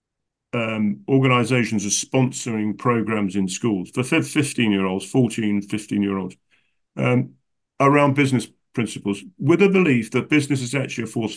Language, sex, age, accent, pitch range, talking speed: English, male, 50-69, British, 100-130 Hz, 120 wpm